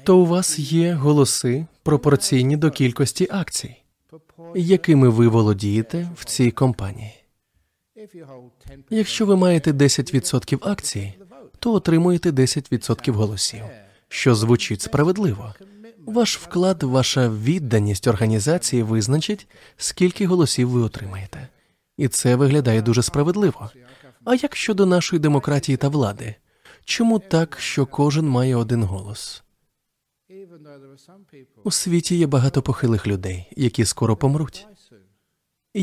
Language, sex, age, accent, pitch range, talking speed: Ukrainian, male, 20-39, native, 115-165 Hz, 110 wpm